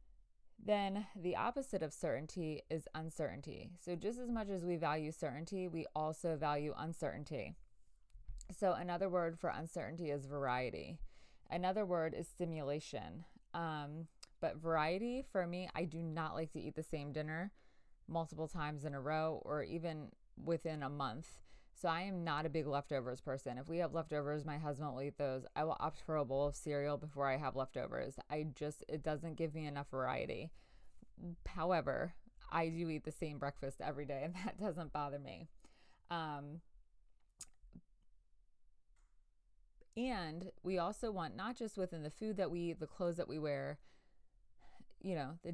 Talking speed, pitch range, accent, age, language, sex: 165 wpm, 145-175 Hz, American, 20-39, English, female